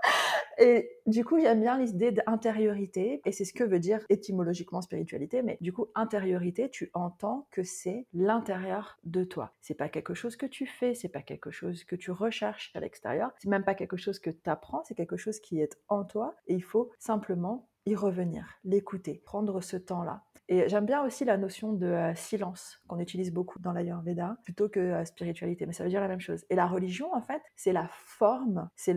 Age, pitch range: 30-49, 175-225 Hz